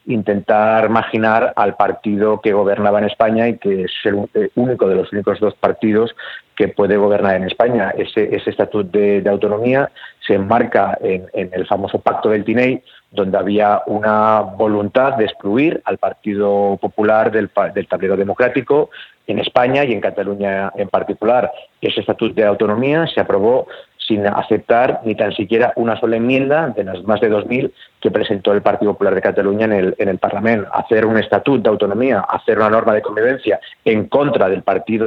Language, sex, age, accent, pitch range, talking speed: French, male, 40-59, Spanish, 100-120 Hz, 175 wpm